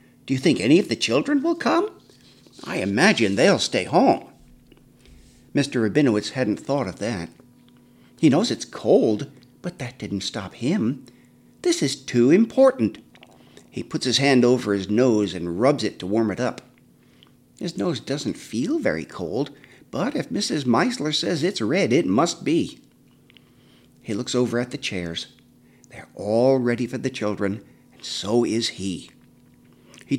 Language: English